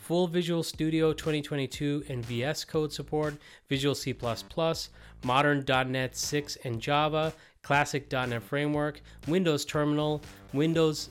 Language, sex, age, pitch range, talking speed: English, male, 30-49, 115-150 Hz, 105 wpm